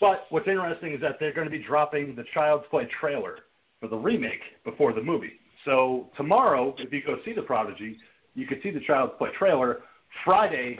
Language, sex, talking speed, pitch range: English, male, 200 wpm, 130-170 Hz